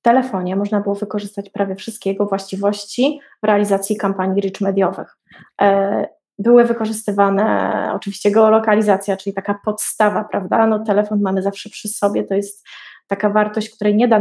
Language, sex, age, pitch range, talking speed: Polish, female, 20-39, 205-235 Hz, 145 wpm